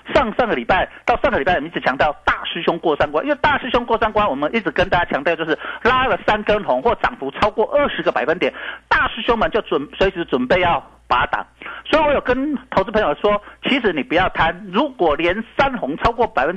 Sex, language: male, Chinese